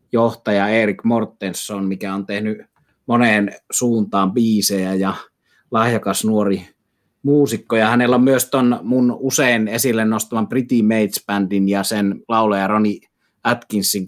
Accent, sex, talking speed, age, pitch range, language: native, male, 130 wpm, 30-49, 100-120 Hz, Finnish